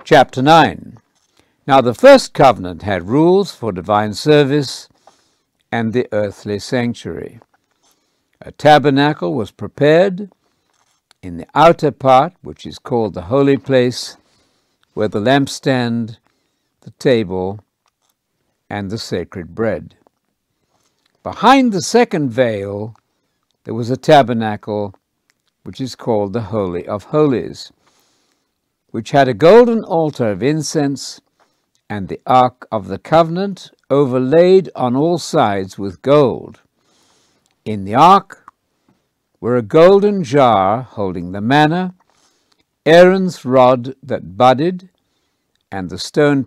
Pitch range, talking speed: 105-155 Hz, 115 wpm